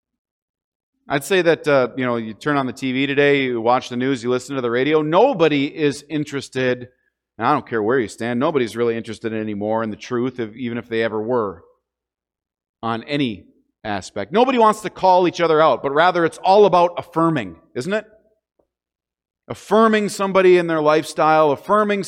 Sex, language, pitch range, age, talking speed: male, English, 115-165 Hz, 40-59, 180 wpm